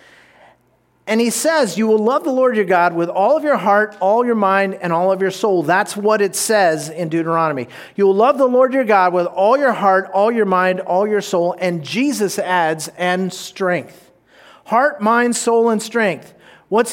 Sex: male